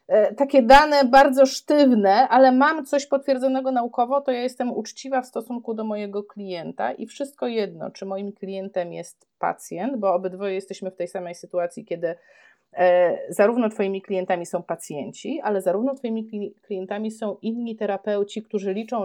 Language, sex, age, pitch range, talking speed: Polish, female, 30-49, 190-245 Hz, 150 wpm